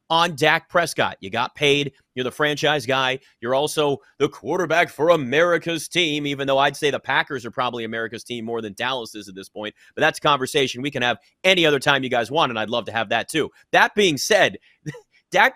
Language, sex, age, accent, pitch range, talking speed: English, male, 30-49, American, 125-170 Hz, 225 wpm